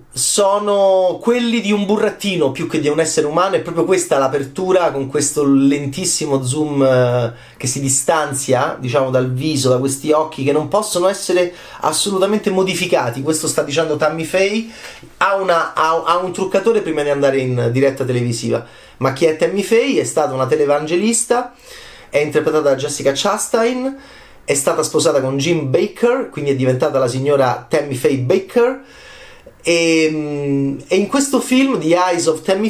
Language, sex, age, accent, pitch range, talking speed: Italian, male, 30-49, native, 145-220 Hz, 160 wpm